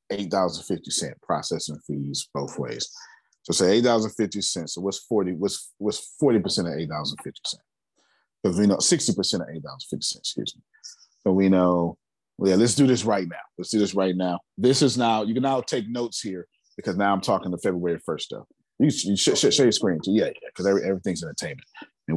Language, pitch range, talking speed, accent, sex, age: English, 85-115 Hz, 230 wpm, American, male, 30-49